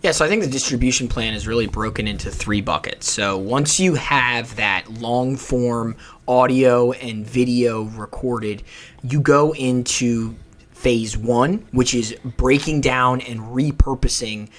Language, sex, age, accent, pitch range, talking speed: English, male, 20-39, American, 115-140 Hz, 140 wpm